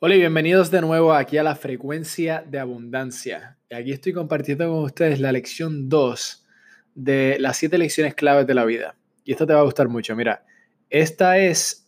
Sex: male